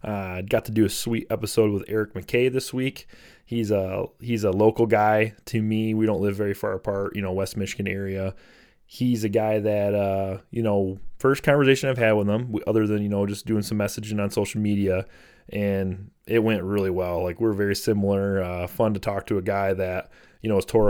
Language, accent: English, American